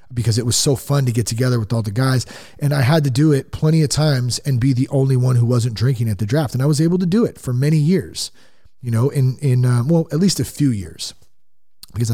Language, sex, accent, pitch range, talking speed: English, male, American, 110-150 Hz, 265 wpm